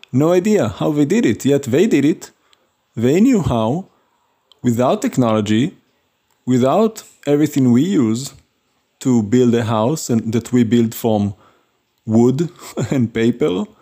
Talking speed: 135 wpm